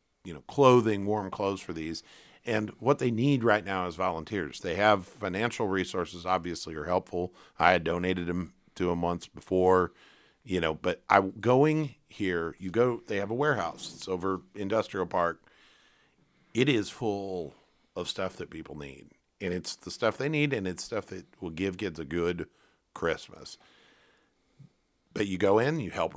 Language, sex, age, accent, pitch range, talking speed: English, male, 50-69, American, 90-110 Hz, 175 wpm